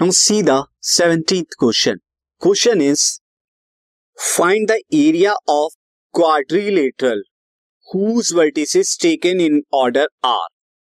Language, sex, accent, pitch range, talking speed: Hindi, male, native, 130-185 Hz, 75 wpm